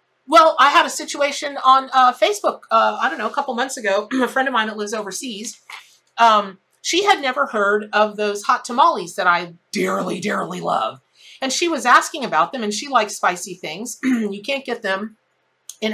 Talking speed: 200 wpm